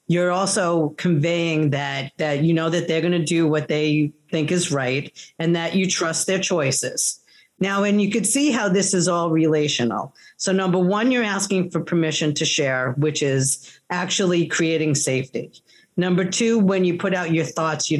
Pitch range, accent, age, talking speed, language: 145-180 Hz, American, 40-59, 185 wpm, English